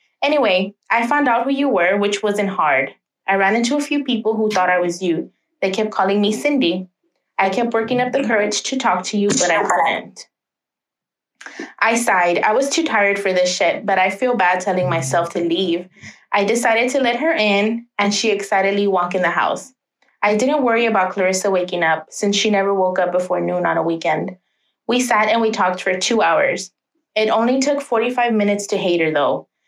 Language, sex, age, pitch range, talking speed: English, female, 20-39, 185-230 Hz, 210 wpm